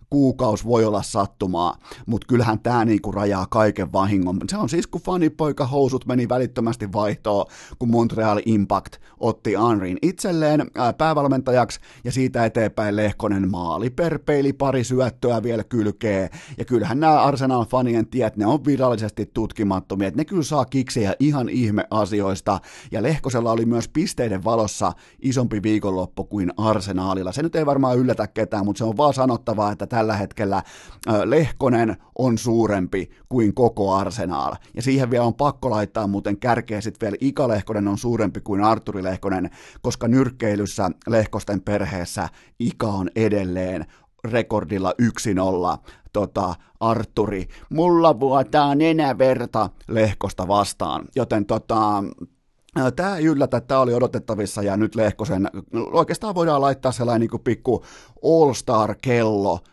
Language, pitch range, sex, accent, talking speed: Finnish, 105-130 Hz, male, native, 135 wpm